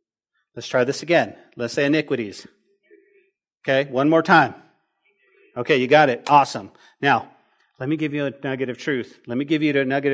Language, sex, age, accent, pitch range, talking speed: English, male, 40-59, American, 130-185 Hz, 185 wpm